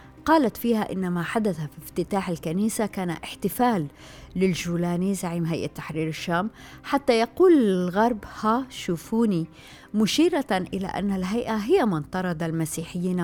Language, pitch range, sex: Arabic, 165-215 Hz, female